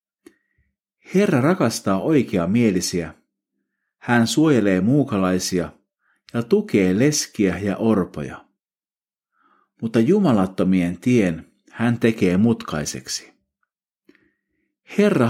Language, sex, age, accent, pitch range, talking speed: Finnish, male, 50-69, native, 90-135 Hz, 70 wpm